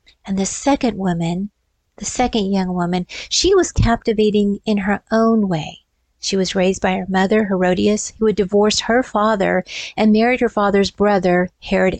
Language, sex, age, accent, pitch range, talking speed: English, female, 50-69, American, 185-220 Hz, 165 wpm